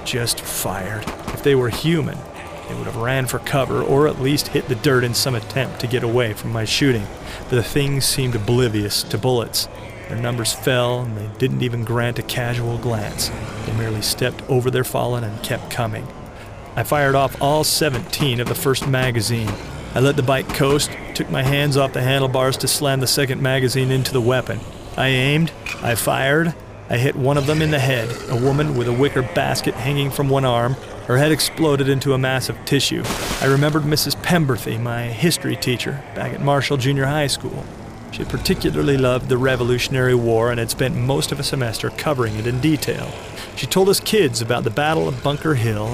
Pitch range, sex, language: 115-140 Hz, male, English